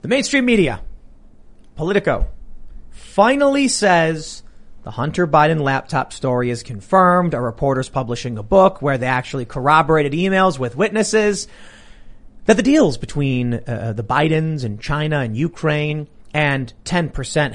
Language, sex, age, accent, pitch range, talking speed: English, male, 30-49, American, 135-195 Hz, 135 wpm